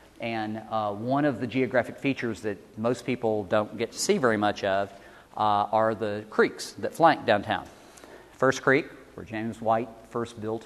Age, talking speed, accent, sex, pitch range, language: 40-59, 175 wpm, American, male, 105-120 Hz, English